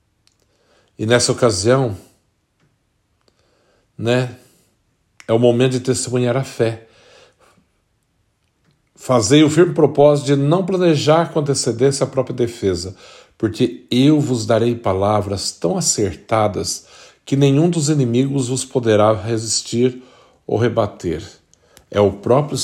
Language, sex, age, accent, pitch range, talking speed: Portuguese, male, 50-69, Brazilian, 100-125 Hz, 110 wpm